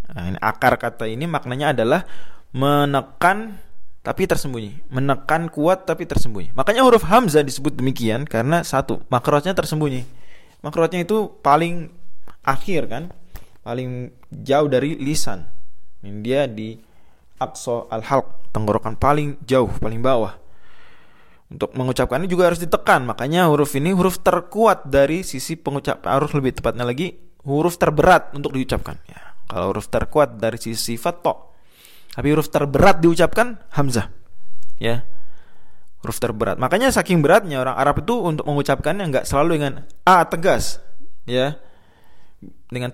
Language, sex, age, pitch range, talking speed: Indonesian, male, 20-39, 115-160 Hz, 130 wpm